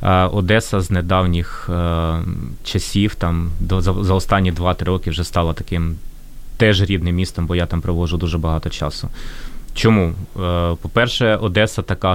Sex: male